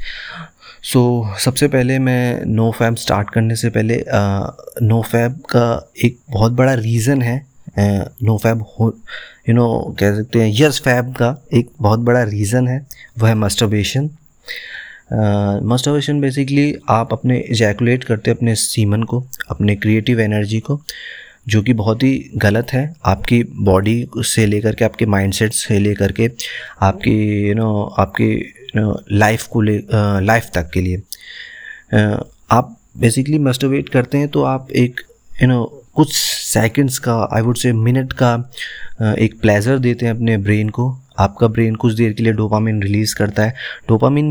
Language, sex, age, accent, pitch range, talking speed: Hindi, male, 30-49, native, 110-125 Hz, 165 wpm